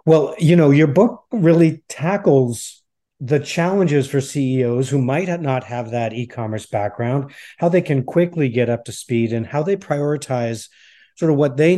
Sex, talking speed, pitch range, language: male, 180 wpm, 115-145 Hz, English